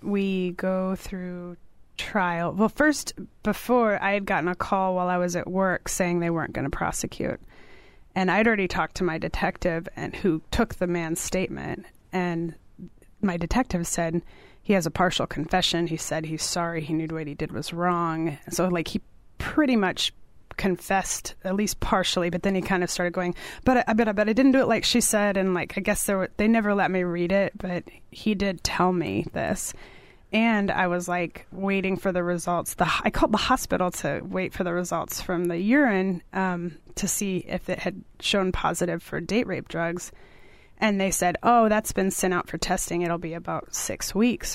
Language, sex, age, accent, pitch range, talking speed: English, female, 30-49, American, 175-195 Hz, 200 wpm